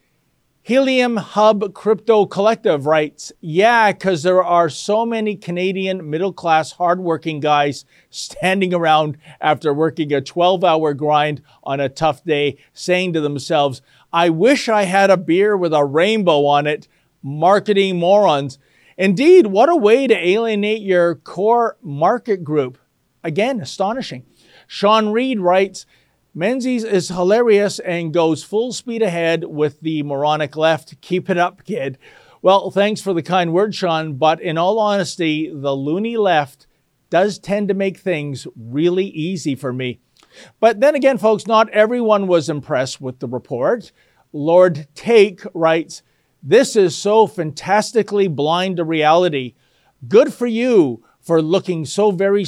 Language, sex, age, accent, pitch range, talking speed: English, male, 50-69, American, 150-205 Hz, 140 wpm